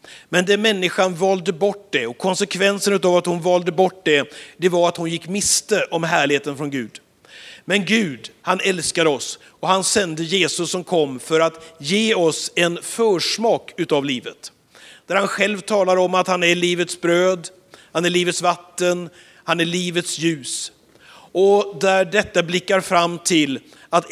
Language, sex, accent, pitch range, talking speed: Swedish, male, native, 160-195 Hz, 170 wpm